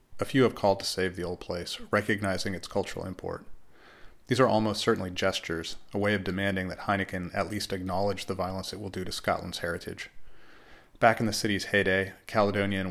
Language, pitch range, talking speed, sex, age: English, 95-110 Hz, 190 wpm, male, 30-49